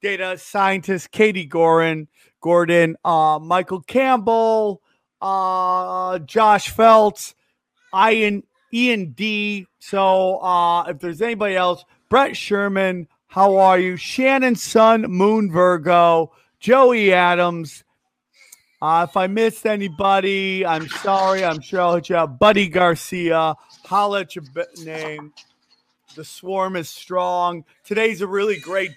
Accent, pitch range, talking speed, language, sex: American, 170-200 Hz, 120 wpm, English, male